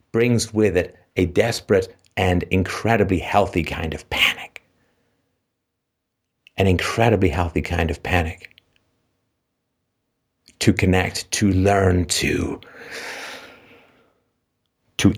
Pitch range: 90-120 Hz